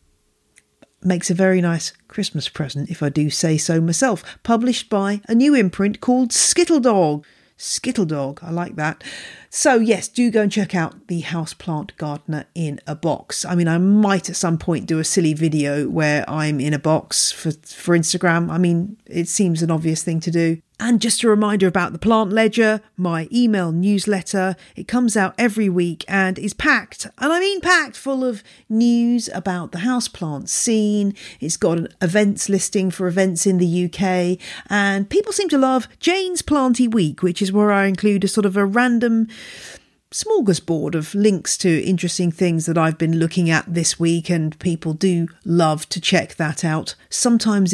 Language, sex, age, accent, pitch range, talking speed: English, female, 40-59, British, 165-220 Hz, 185 wpm